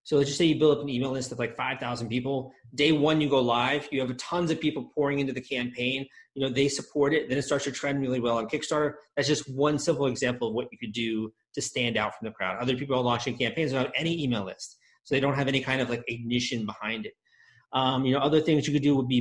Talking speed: 275 wpm